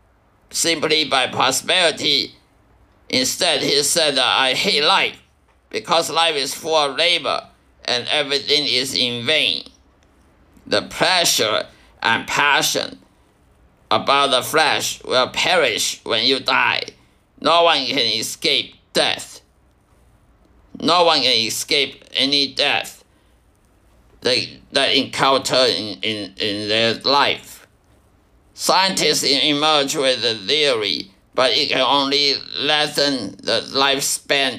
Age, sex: 50-69, male